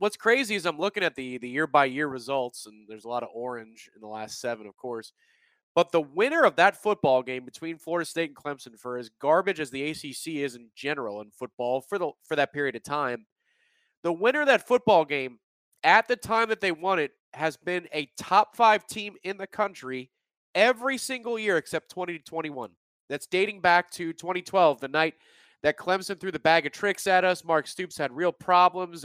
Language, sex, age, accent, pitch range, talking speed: English, male, 30-49, American, 135-205 Hz, 205 wpm